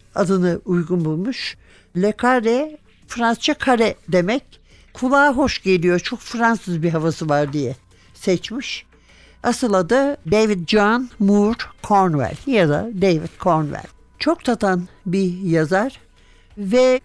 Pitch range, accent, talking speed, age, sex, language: 180-240 Hz, native, 115 wpm, 60-79, male, Turkish